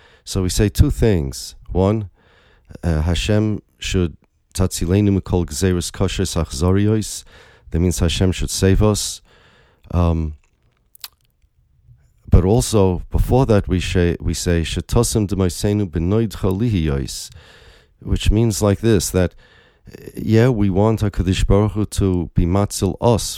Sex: male